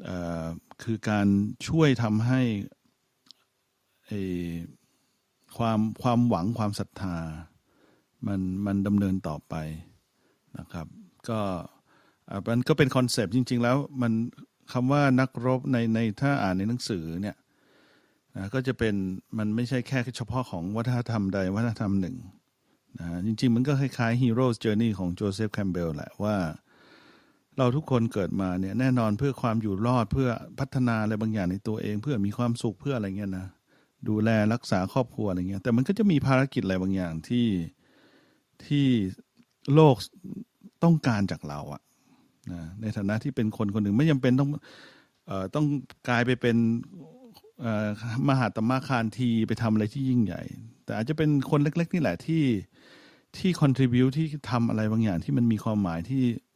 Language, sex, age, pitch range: English, male, 60-79, 100-130 Hz